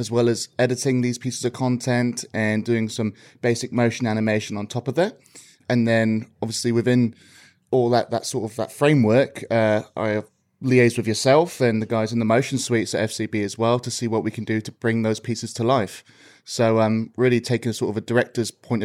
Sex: male